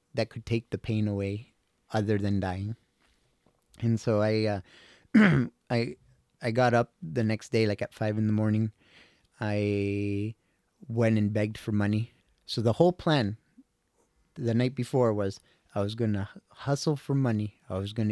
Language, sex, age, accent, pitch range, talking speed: English, male, 30-49, American, 105-125 Hz, 165 wpm